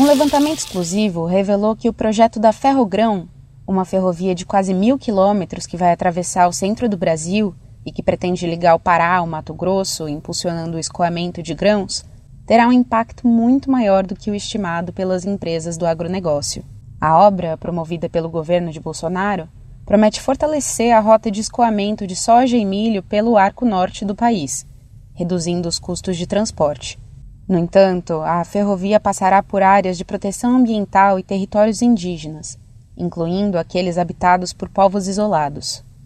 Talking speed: 160 wpm